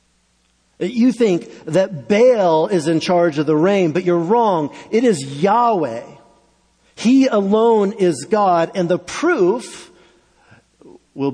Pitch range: 130-175 Hz